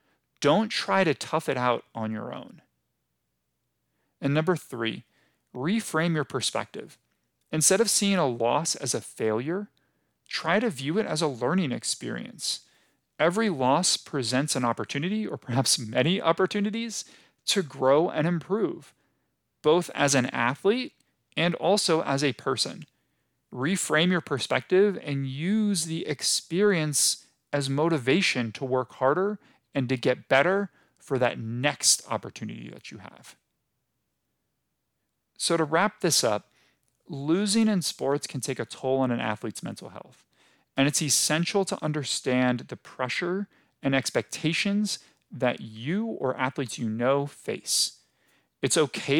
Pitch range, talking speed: 130-180 Hz, 135 wpm